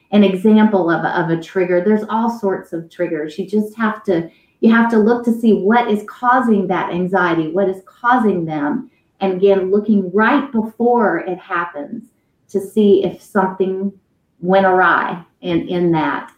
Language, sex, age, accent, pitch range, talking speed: English, female, 30-49, American, 180-220 Hz, 170 wpm